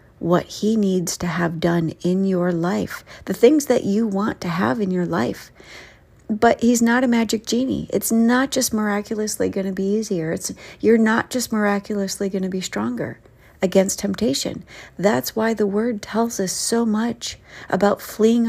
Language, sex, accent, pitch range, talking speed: English, female, American, 185-220 Hz, 175 wpm